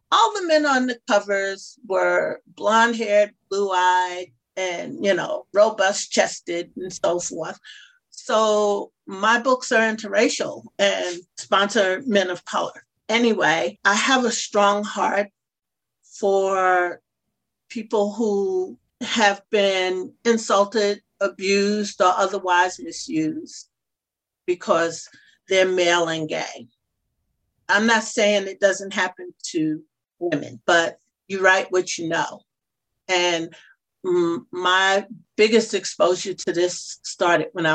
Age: 50-69